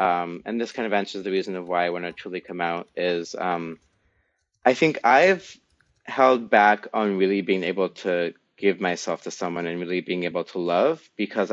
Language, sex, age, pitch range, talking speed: English, male, 20-39, 85-100 Hz, 205 wpm